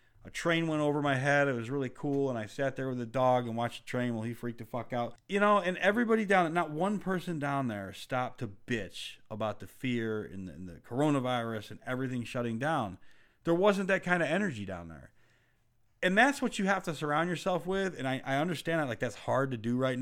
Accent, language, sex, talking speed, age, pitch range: American, English, male, 235 wpm, 40-59, 115-165 Hz